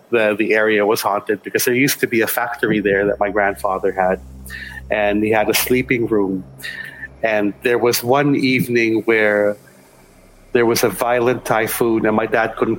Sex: male